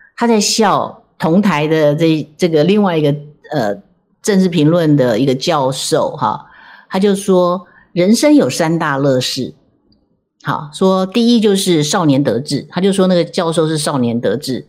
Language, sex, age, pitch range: Chinese, female, 50-69, 155-220 Hz